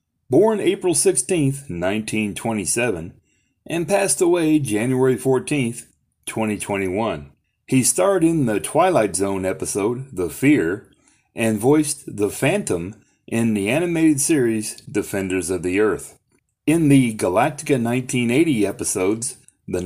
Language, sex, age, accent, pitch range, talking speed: English, male, 30-49, American, 110-185 Hz, 110 wpm